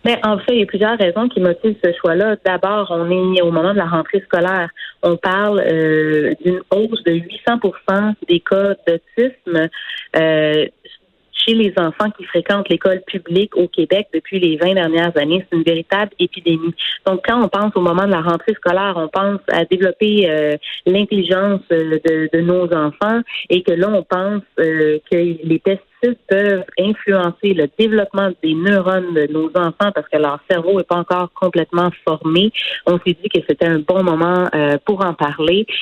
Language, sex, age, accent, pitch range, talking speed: French, female, 30-49, Canadian, 165-200 Hz, 180 wpm